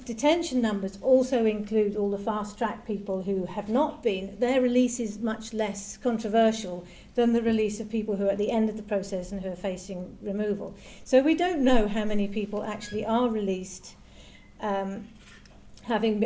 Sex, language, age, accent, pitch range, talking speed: female, English, 50-69, British, 200-240 Hz, 175 wpm